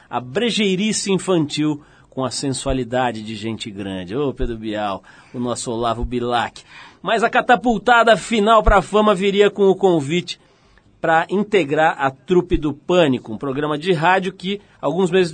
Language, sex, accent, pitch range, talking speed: Portuguese, male, Brazilian, 135-195 Hz, 155 wpm